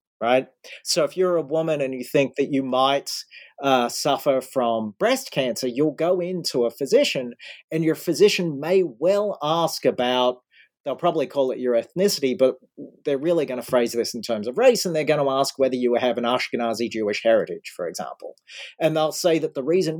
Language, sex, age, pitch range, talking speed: English, male, 40-59, 125-175 Hz, 200 wpm